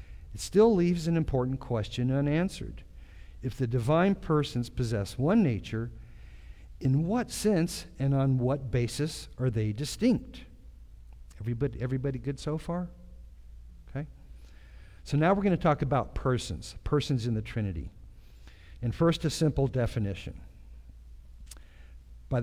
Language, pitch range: English, 85-135 Hz